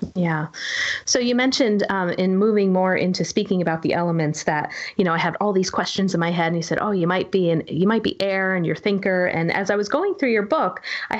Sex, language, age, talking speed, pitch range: female, English, 30-49, 255 wpm, 170-220 Hz